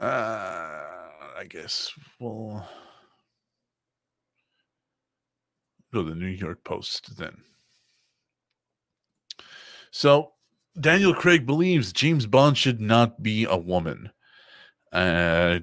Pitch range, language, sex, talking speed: 95-130 Hz, English, male, 90 wpm